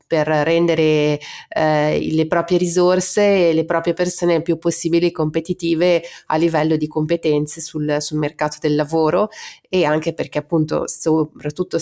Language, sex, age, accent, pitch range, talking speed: Italian, female, 30-49, native, 160-180 Hz, 135 wpm